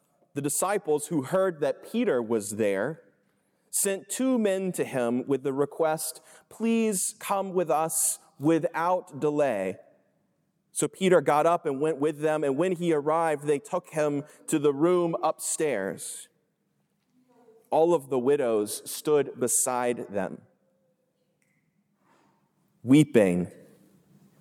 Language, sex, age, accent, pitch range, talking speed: English, male, 30-49, American, 130-180 Hz, 120 wpm